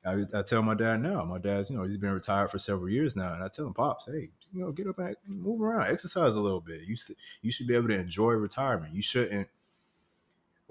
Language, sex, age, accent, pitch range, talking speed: English, male, 30-49, American, 95-110 Hz, 250 wpm